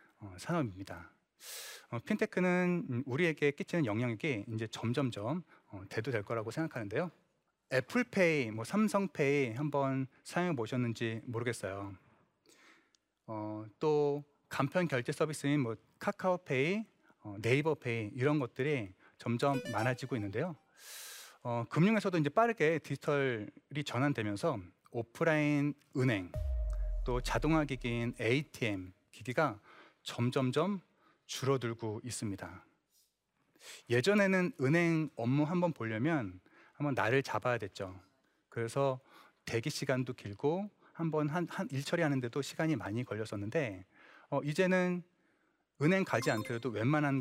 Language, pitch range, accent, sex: Korean, 115-165 Hz, native, male